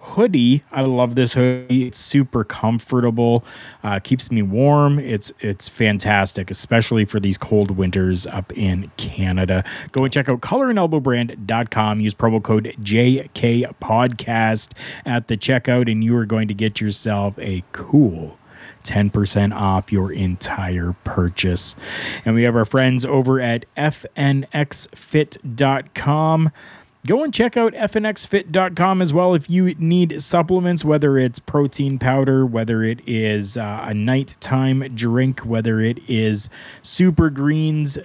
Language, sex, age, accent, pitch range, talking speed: English, male, 30-49, American, 110-145 Hz, 130 wpm